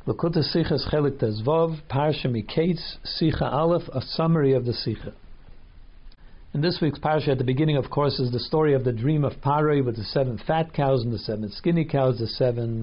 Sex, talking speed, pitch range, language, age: male, 180 wpm, 120-160 Hz, English, 50-69